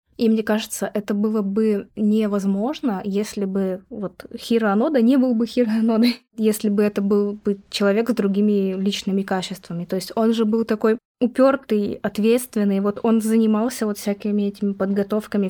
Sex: female